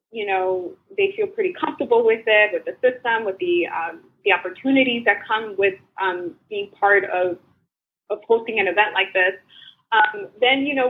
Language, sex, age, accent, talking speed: English, female, 20-39, American, 180 wpm